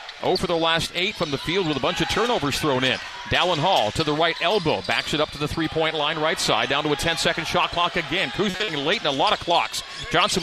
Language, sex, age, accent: English, male, 40-59, American